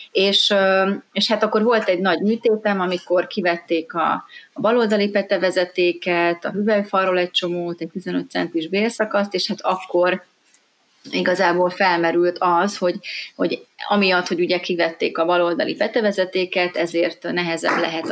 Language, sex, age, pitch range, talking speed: Hungarian, female, 30-49, 175-200 Hz, 135 wpm